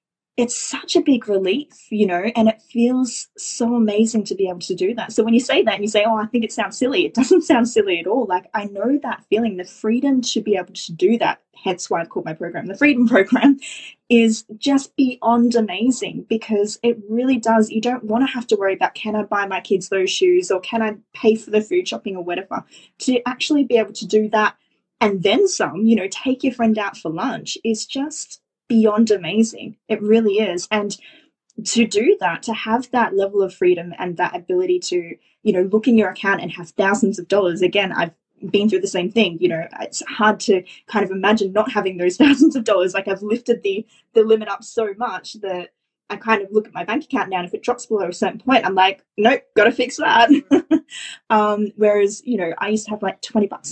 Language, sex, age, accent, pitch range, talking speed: English, female, 20-39, Australian, 200-250 Hz, 230 wpm